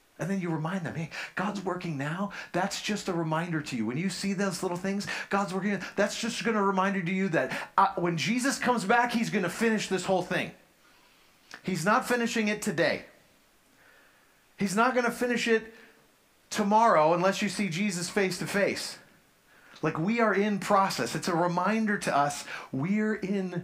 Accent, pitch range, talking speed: American, 145-200 Hz, 190 wpm